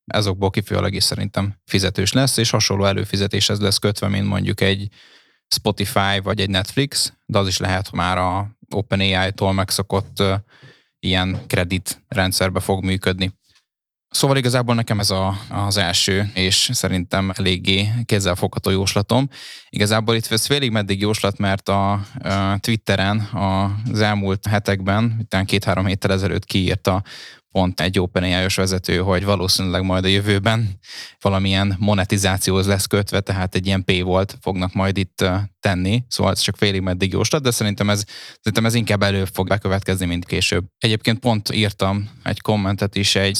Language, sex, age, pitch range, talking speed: Hungarian, male, 20-39, 95-105 Hz, 150 wpm